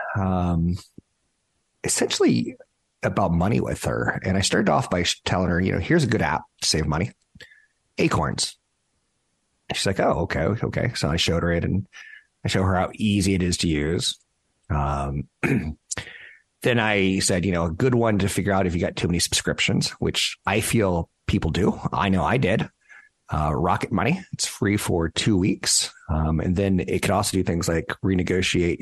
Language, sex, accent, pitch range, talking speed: English, male, American, 85-100 Hz, 185 wpm